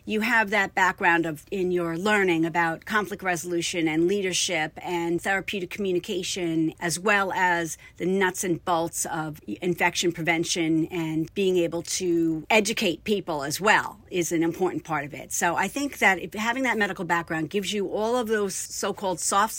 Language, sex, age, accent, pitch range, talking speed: English, female, 40-59, American, 170-195 Hz, 170 wpm